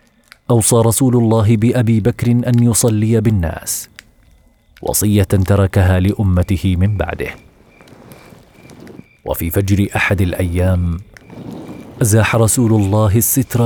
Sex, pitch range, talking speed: male, 95-120 Hz, 90 wpm